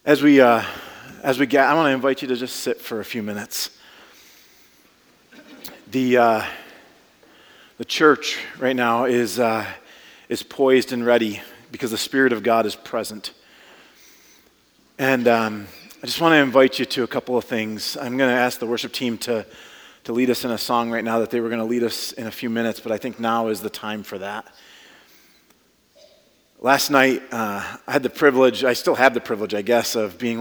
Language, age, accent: English, 30-49, American